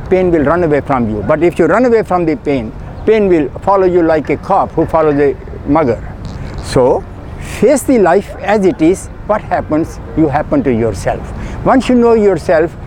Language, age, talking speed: English, 60-79, 195 wpm